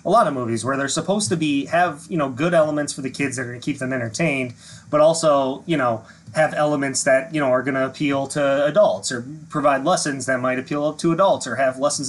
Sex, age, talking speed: male, 30-49, 245 wpm